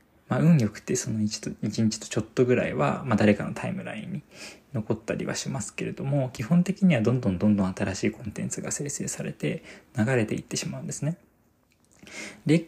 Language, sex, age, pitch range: Japanese, male, 20-39, 100-140 Hz